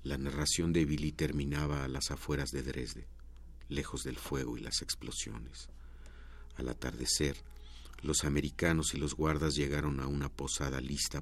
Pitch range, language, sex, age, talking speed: 65-75 Hz, Spanish, male, 50-69, 150 wpm